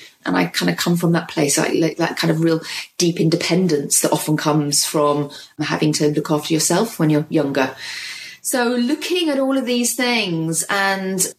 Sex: female